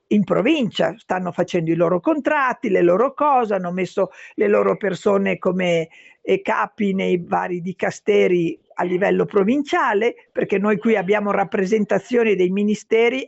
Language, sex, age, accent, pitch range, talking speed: Italian, female, 50-69, native, 195-285 Hz, 135 wpm